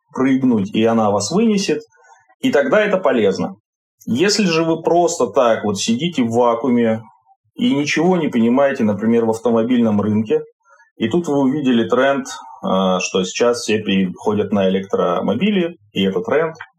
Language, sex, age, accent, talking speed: Russian, male, 30-49, native, 145 wpm